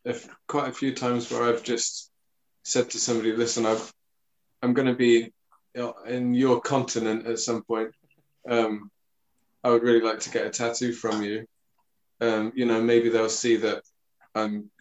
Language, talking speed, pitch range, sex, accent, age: English, 160 wpm, 100-115 Hz, male, British, 20-39